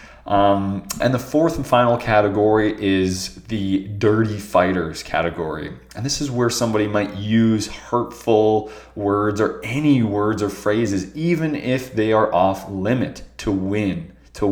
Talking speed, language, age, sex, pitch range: 145 wpm, English, 20-39, male, 95-120 Hz